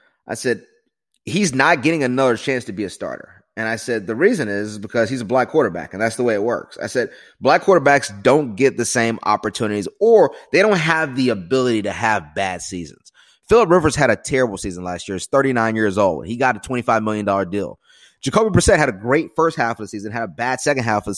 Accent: American